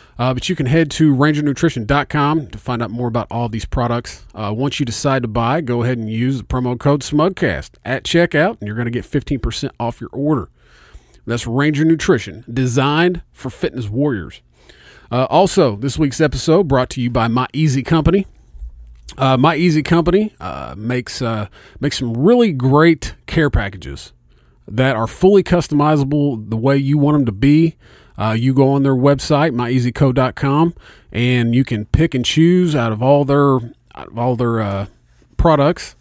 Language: English